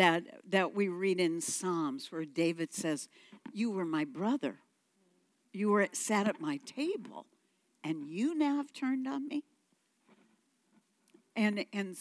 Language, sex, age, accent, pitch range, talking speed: English, female, 60-79, American, 170-270 Hz, 135 wpm